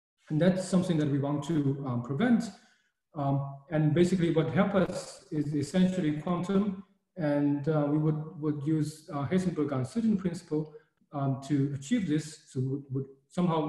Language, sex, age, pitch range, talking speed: English, male, 40-59, 130-165 Hz, 160 wpm